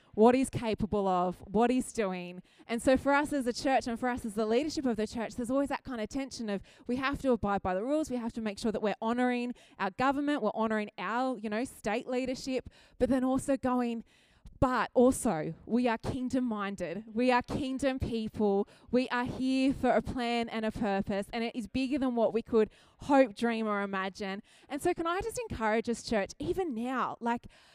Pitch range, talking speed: 215-260 Hz, 215 wpm